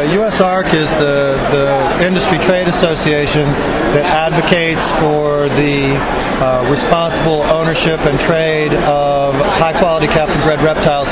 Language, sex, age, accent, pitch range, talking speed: English, male, 30-49, American, 145-160 Hz, 125 wpm